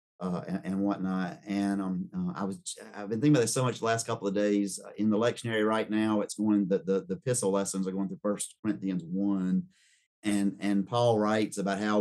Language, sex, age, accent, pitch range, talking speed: English, male, 30-49, American, 95-120 Hz, 230 wpm